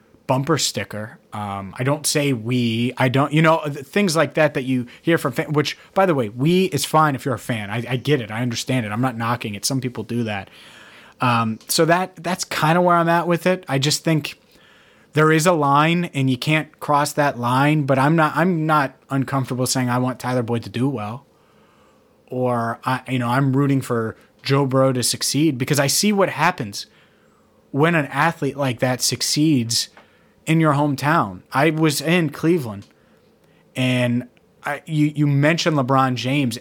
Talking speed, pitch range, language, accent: 205 wpm, 125-160 Hz, English, American